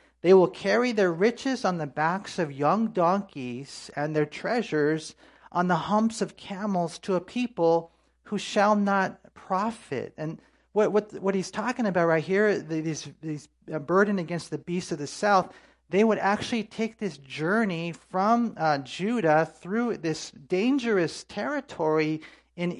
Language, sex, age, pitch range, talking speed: English, male, 40-59, 155-210 Hz, 160 wpm